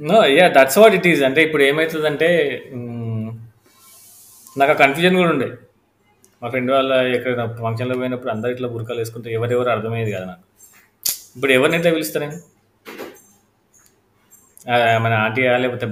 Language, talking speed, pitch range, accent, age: Telugu, 120 wpm, 105-125 Hz, native, 20-39